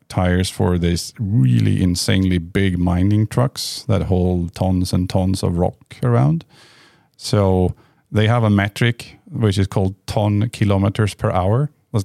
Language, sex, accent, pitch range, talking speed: English, male, Norwegian, 90-110 Hz, 145 wpm